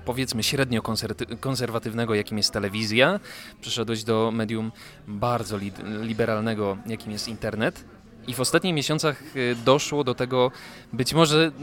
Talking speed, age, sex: 120 wpm, 20-39, male